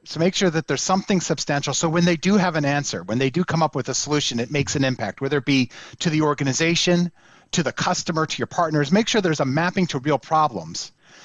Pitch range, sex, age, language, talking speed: 150-190 Hz, male, 40-59, English, 245 wpm